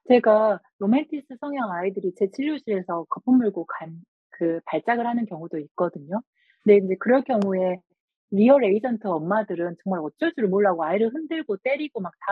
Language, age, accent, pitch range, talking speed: English, 40-59, Korean, 180-230 Hz, 135 wpm